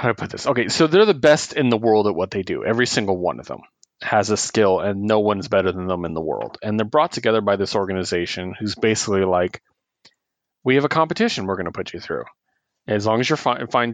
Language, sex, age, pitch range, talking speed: English, male, 30-49, 100-120 Hz, 255 wpm